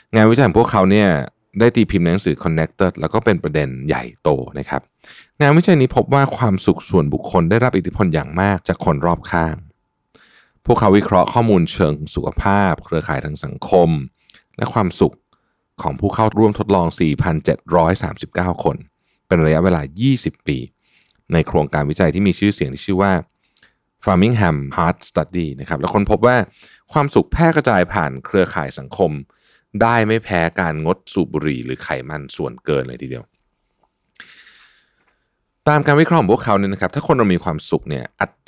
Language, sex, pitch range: Thai, male, 80-115 Hz